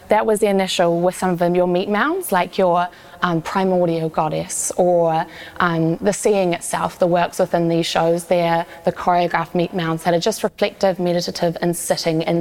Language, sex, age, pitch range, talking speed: English, female, 20-39, 170-185 Hz, 190 wpm